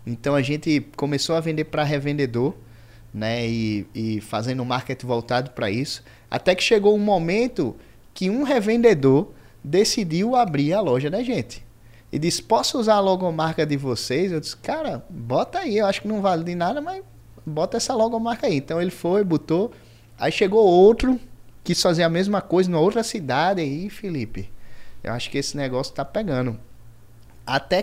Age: 20-39